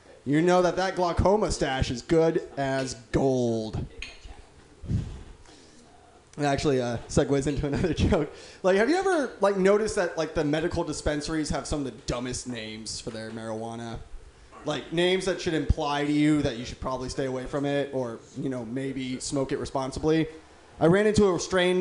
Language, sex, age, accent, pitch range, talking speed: English, male, 20-39, American, 130-170 Hz, 175 wpm